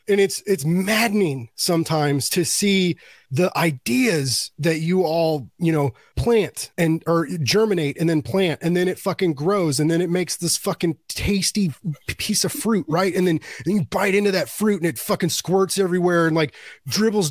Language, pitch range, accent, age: English, 150-200 Hz, American, 30-49